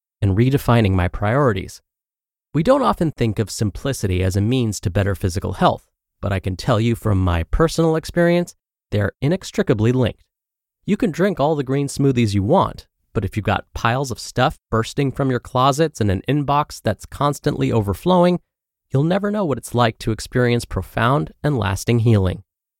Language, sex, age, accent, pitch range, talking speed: English, male, 30-49, American, 100-145 Hz, 175 wpm